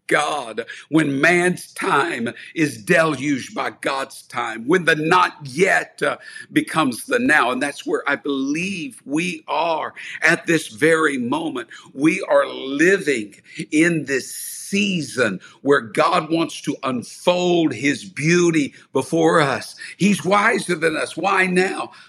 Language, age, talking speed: English, 50-69, 130 wpm